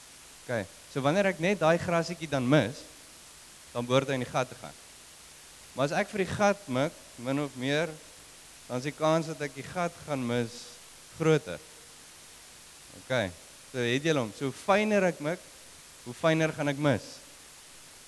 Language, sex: English, male